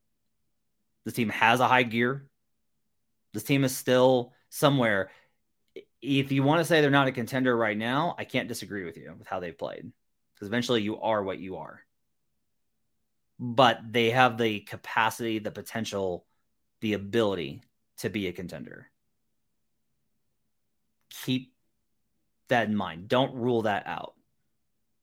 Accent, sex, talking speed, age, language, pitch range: American, male, 140 wpm, 30-49, English, 105-130 Hz